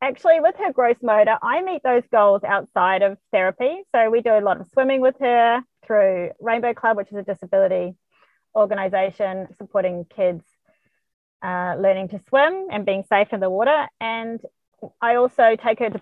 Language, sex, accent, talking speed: English, female, Australian, 175 wpm